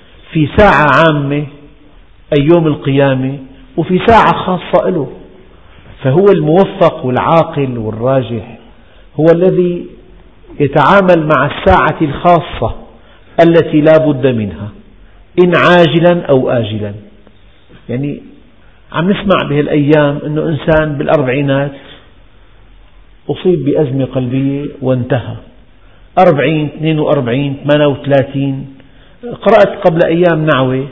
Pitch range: 130-160 Hz